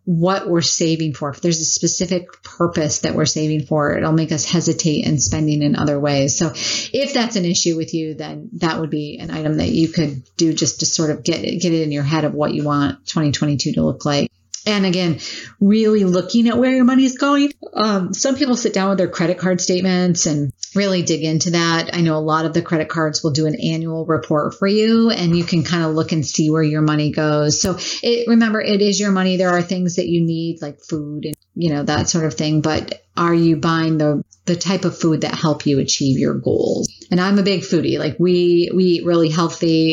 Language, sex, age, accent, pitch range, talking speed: English, female, 40-59, American, 155-180 Hz, 235 wpm